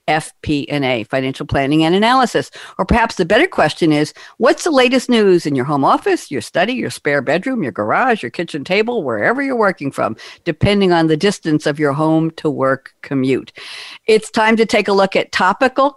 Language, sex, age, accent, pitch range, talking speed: English, female, 60-79, American, 160-215 Hz, 190 wpm